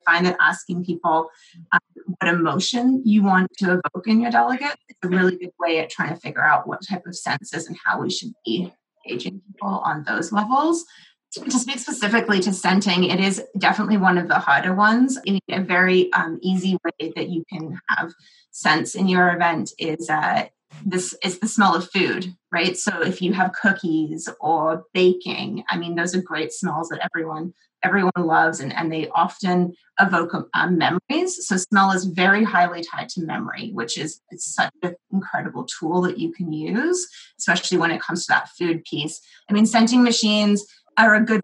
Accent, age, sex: American, 30-49, female